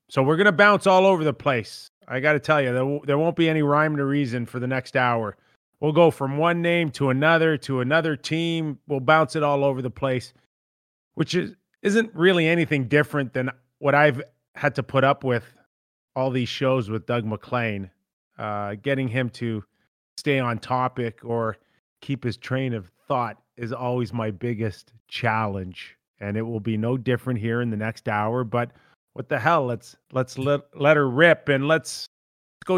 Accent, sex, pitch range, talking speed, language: American, male, 120-155 Hz, 195 wpm, English